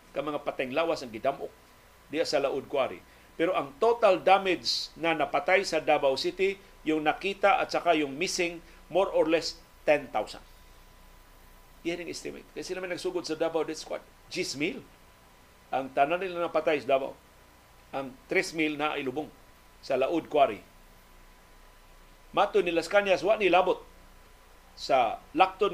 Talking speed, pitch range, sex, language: 140 wpm, 150-185 Hz, male, Filipino